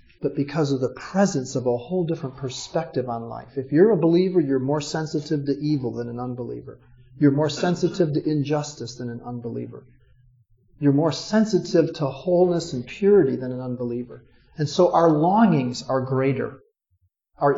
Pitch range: 130-170 Hz